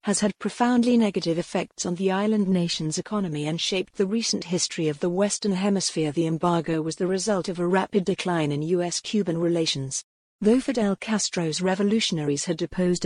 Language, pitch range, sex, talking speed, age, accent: English, 170-205 Hz, female, 170 wpm, 50-69, British